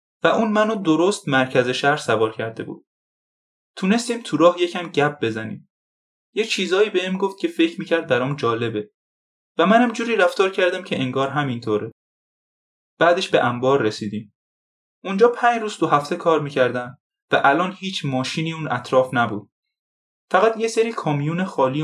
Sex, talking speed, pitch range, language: male, 155 wpm, 120-185 Hz, Persian